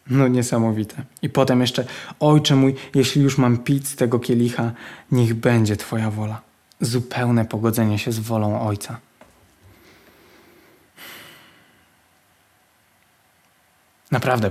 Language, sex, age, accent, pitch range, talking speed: Polish, male, 20-39, native, 110-125 Hz, 100 wpm